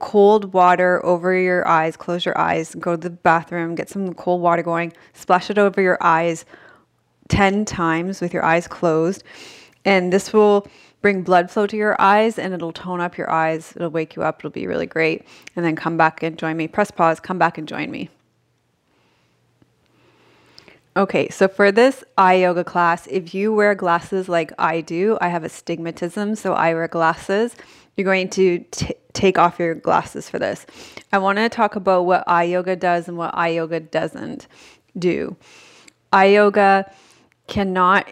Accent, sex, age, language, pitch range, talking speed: American, female, 20-39, English, 165-195 Hz, 180 wpm